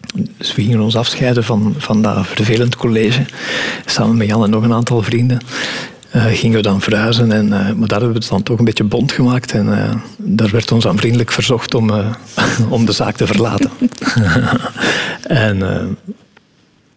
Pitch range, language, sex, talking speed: 110-130 Hz, Dutch, male, 185 wpm